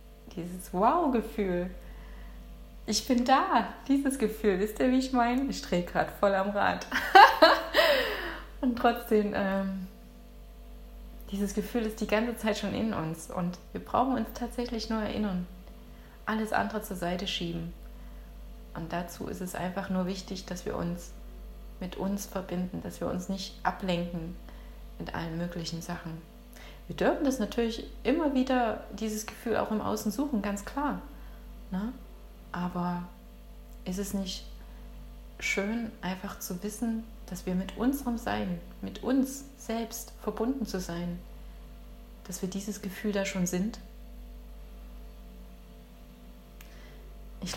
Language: German